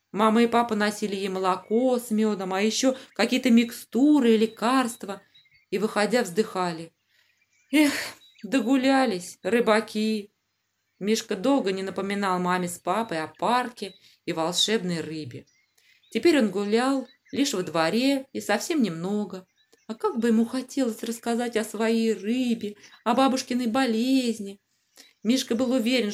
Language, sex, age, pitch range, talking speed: Russian, female, 20-39, 185-245 Hz, 130 wpm